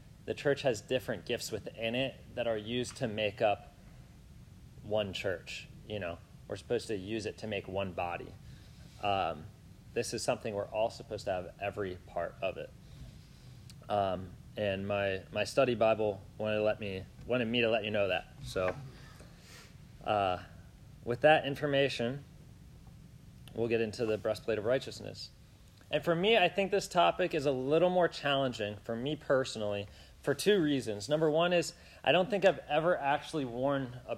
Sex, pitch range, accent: male, 100-140 Hz, American